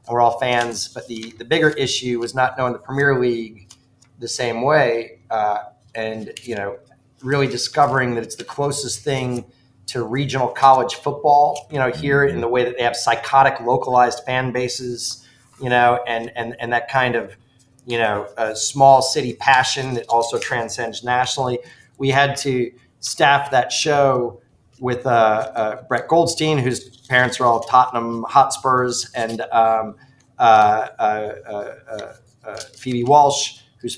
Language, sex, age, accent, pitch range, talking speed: English, male, 30-49, American, 120-135 Hz, 155 wpm